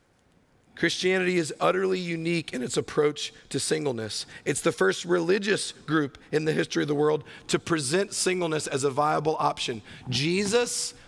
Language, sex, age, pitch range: English, male, 40-59, 145-180 Hz